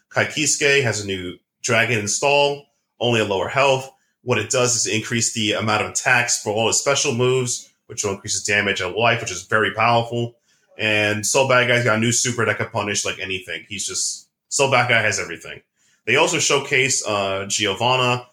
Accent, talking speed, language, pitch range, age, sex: American, 195 wpm, English, 105-125 Hz, 30-49, male